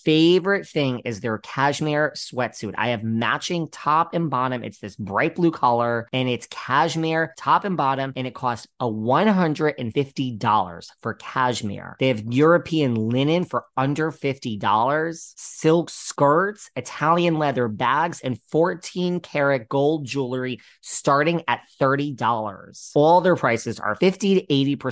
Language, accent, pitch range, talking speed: English, American, 115-160 Hz, 130 wpm